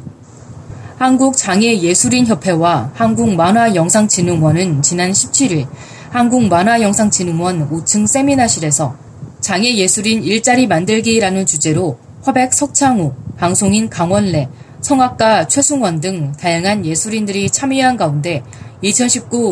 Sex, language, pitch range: female, Korean, 160-230 Hz